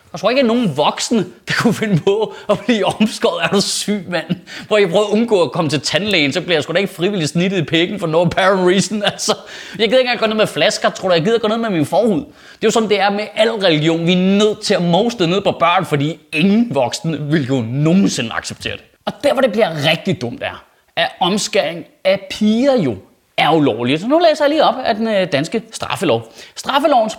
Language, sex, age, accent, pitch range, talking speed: Danish, male, 30-49, native, 175-235 Hz, 245 wpm